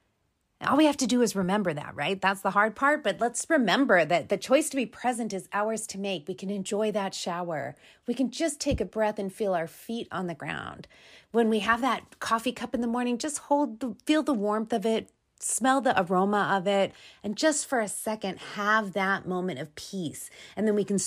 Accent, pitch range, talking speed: American, 190-250 Hz, 230 wpm